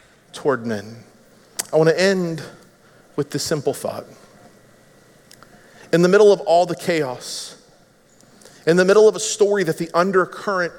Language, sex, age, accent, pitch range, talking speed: English, male, 40-59, American, 155-190 Hz, 145 wpm